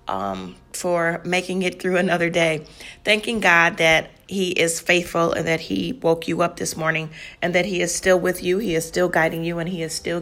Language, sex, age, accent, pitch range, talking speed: English, female, 40-59, American, 170-200 Hz, 215 wpm